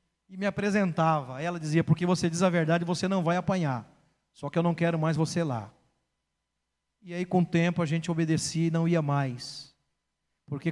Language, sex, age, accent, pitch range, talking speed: Portuguese, male, 40-59, Brazilian, 165-265 Hz, 195 wpm